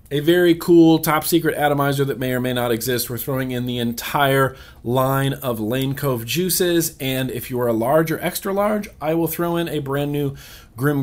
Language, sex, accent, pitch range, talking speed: English, male, American, 125-160 Hz, 210 wpm